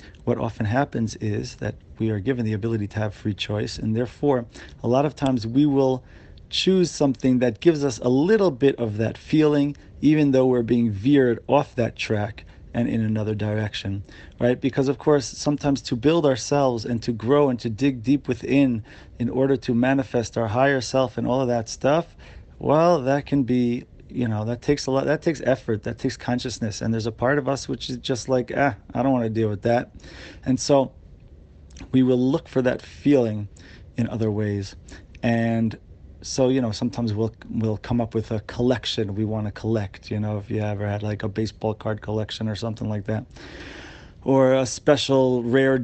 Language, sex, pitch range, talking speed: English, male, 110-130 Hz, 200 wpm